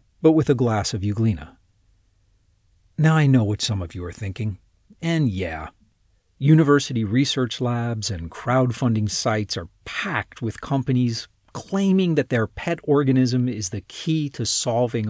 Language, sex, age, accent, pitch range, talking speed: English, male, 40-59, American, 100-135 Hz, 145 wpm